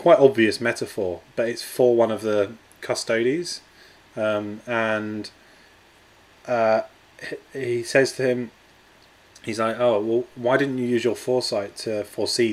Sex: male